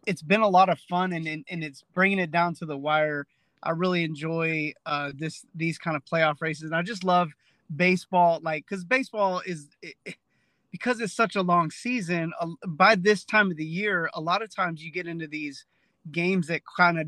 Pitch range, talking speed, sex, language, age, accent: 160-185 Hz, 220 wpm, male, English, 20-39, American